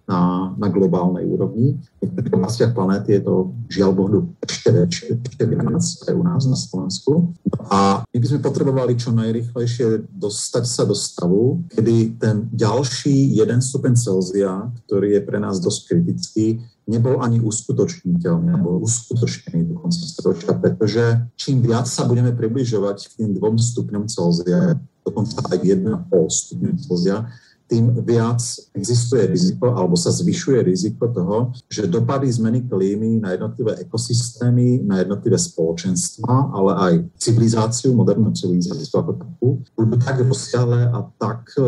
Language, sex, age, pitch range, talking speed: Slovak, male, 40-59, 105-125 Hz, 130 wpm